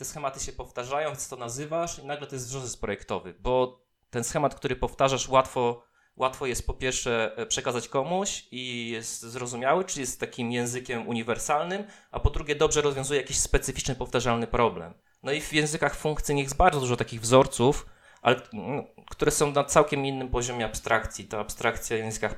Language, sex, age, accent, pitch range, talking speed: Polish, male, 20-39, native, 115-145 Hz, 175 wpm